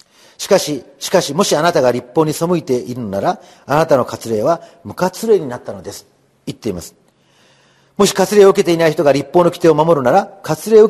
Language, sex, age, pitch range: Japanese, male, 40-59, 135-195 Hz